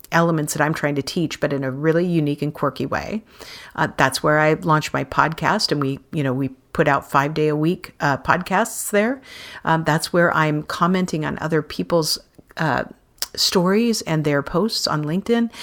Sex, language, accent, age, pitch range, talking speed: female, English, American, 50-69, 150-200 Hz, 190 wpm